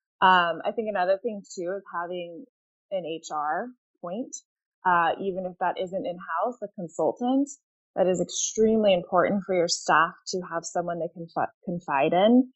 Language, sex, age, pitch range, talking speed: English, female, 20-39, 175-225 Hz, 160 wpm